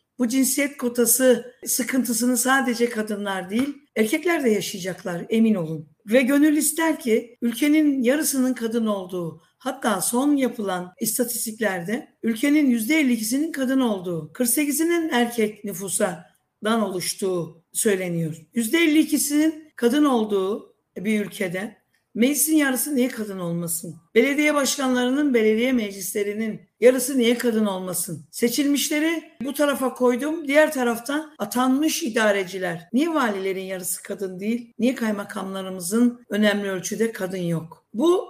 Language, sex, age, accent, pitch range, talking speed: Turkish, female, 50-69, native, 200-265 Hz, 115 wpm